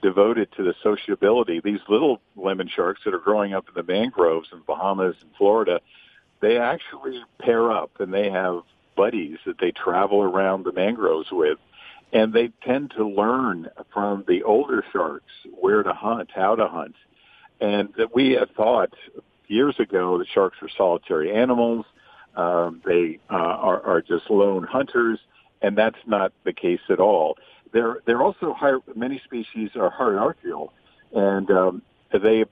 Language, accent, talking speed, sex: English, American, 160 wpm, male